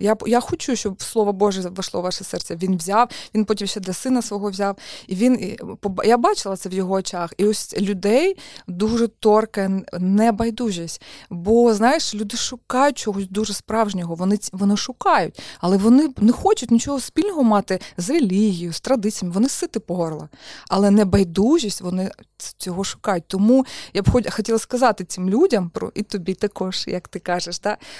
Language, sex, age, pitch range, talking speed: Ukrainian, female, 20-39, 195-250 Hz, 165 wpm